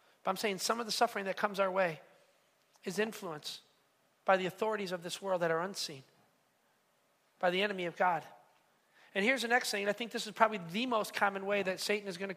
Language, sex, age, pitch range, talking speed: English, male, 40-59, 195-250 Hz, 225 wpm